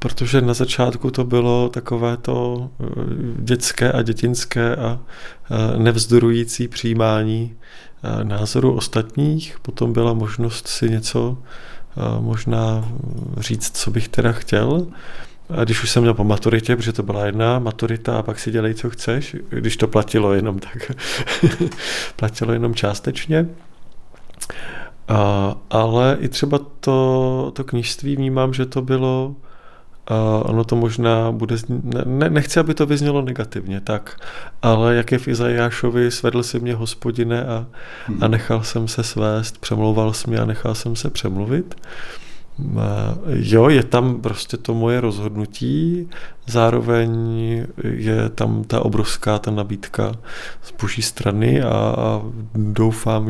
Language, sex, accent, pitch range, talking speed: Czech, male, native, 110-125 Hz, 135 wpm